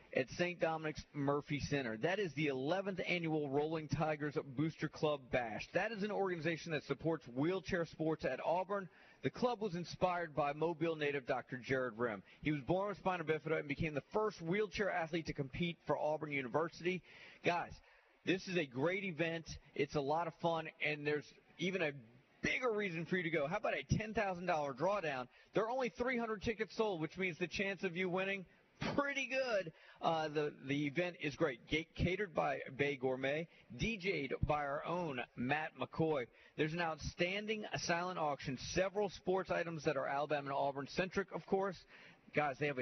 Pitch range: 145-185 Hz